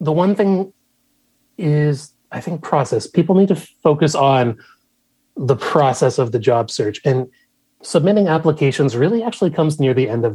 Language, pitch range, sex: English, 130-160 Hz, male